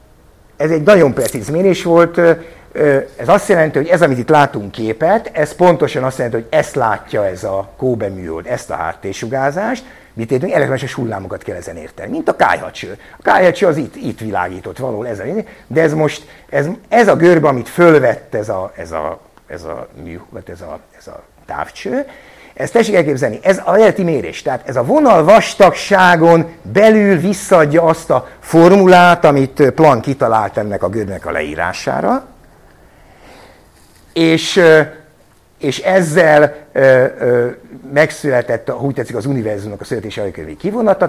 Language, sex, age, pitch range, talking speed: Hungarian, male, 60-79, 120-175 Hz, 155 wpm